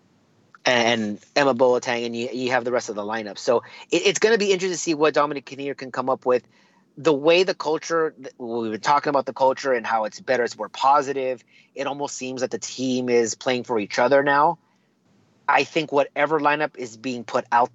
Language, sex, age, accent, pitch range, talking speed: English, male, 30-49, American, 125-160 Hz, 220 wpm